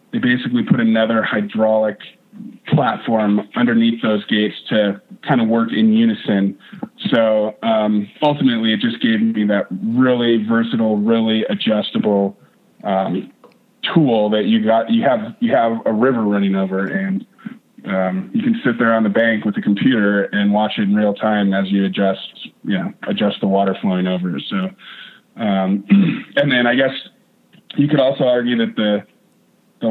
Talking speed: 160 wpm